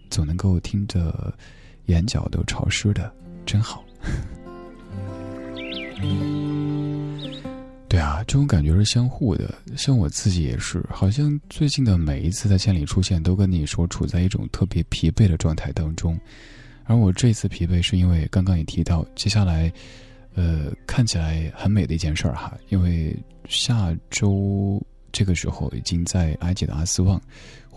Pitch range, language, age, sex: 85-110 Hz, Chinese, 20-39, male